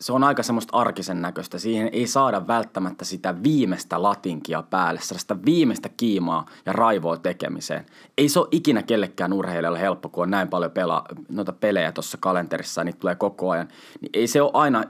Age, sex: 20-39, male